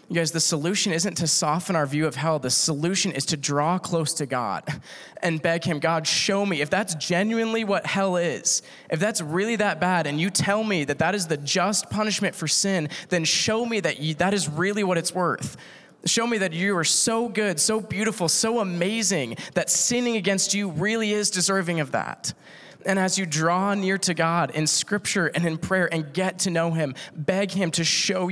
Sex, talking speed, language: male, 210 wpm, English